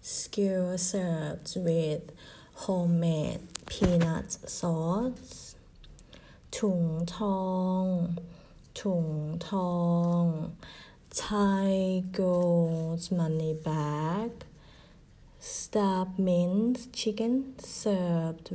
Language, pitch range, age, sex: Thai, 170-195 Hz, 30-49, female